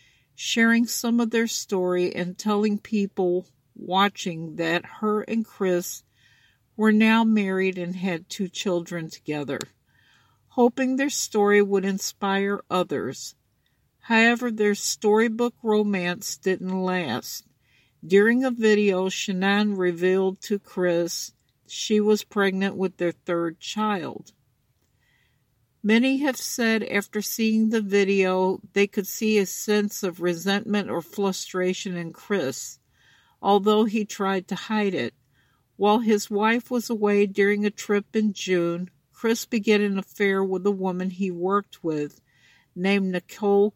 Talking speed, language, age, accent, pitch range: 130 wpm, English, 60-79, American, 180-215 Hz